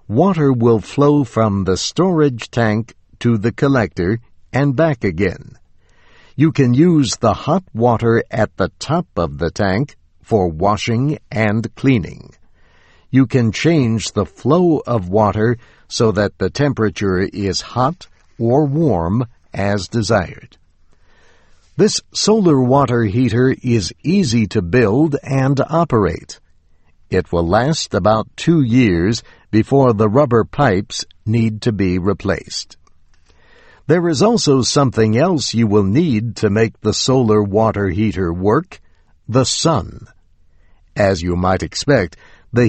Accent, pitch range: American, 95-130 Hz